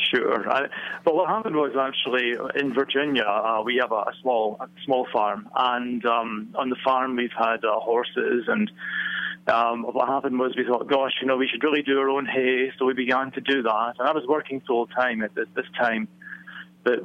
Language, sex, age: English, male, 30-49